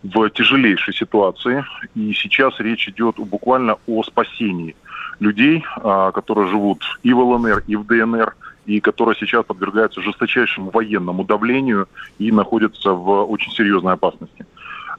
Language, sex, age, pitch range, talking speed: Russian, male, 20-39, 95-115 Hz, 130 wpm